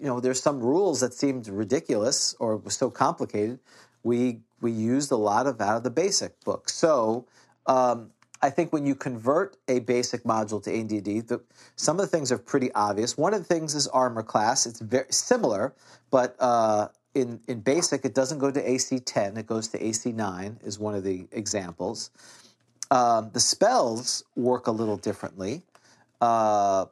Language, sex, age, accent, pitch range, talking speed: English, male, 40-59, American, 110-140 Hz, 185 wpm